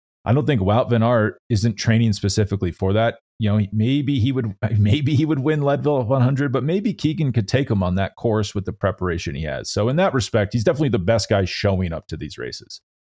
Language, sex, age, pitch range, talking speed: English, male, 30-49, 95-120 Hz, 235 wpm